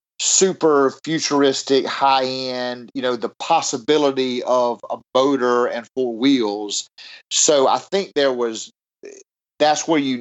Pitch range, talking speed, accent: 120-150 Hz, 125 wpm, American